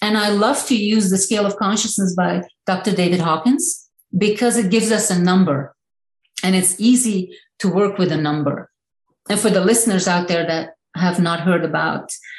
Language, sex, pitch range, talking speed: English, female, 170-205 Hz, 185 wpm